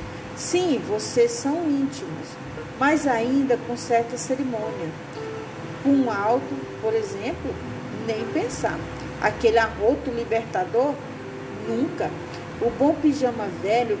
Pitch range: 220-290 Hz